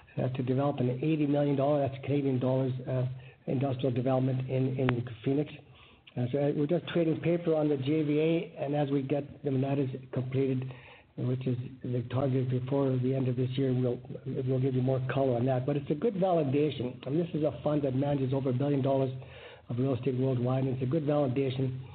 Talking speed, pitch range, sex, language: 205 wpm, 130-150 Hz, male, English